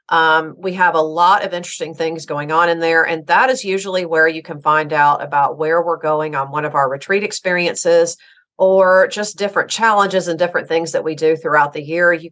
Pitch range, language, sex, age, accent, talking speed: 160-195 Hz, English, female, 40-59, American, 220 wpm